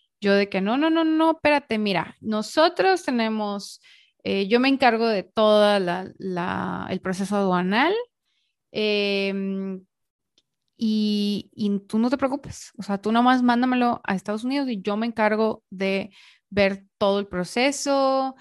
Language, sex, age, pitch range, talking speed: Spanish, female, 20-39, 185-235 Hz, 150 wpm